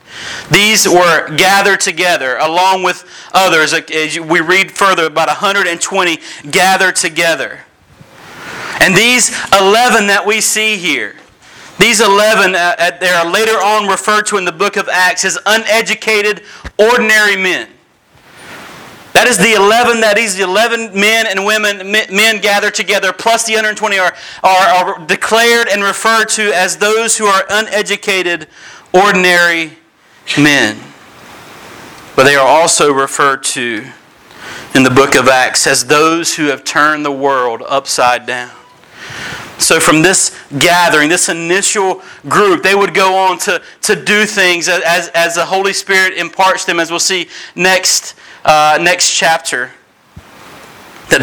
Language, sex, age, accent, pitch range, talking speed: English, male, 40-59, American, 155-205 Hz, 140 wpm